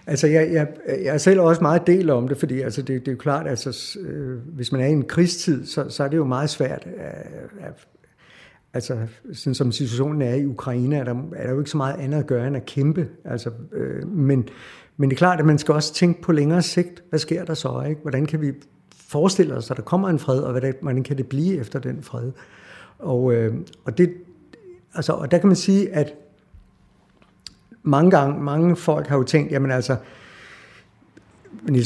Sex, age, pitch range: male, 60-79, 135-175 Hz